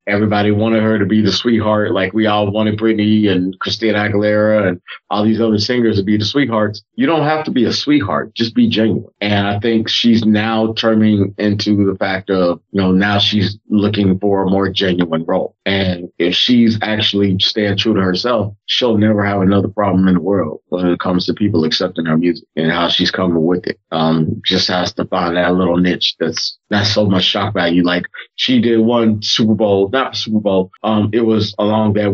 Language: English